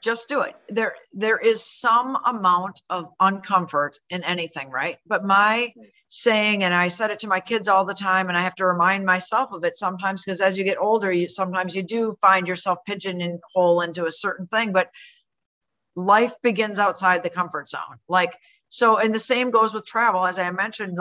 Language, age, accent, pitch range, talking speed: English, 40-59, American, 180-230 Hz, 195 wpm